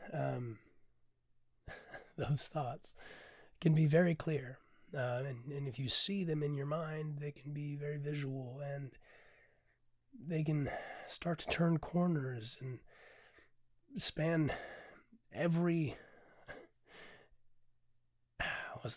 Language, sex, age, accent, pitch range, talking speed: English, male, 30-49, American, 120-160 Hz, 105 wpm